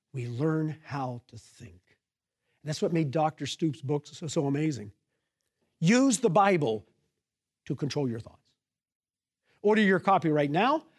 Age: 50-69